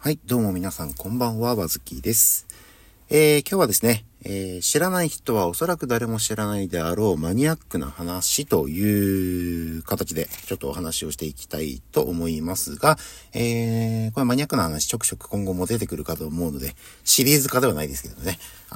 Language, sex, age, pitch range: Japanese, male, 50-69, 85-140 Hz